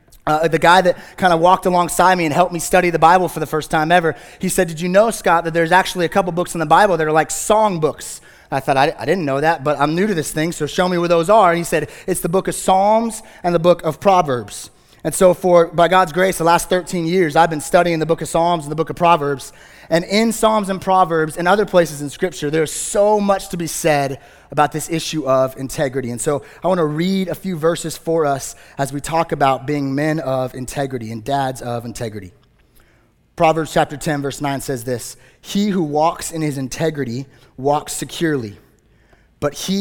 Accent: American